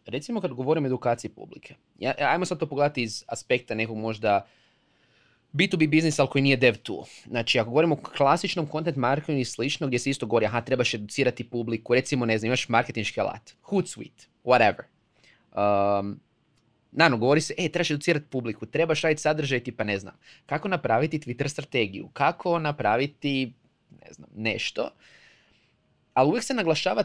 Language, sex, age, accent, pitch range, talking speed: Croatian, male, 20-39, native, 120-165 Hz, 160 wpm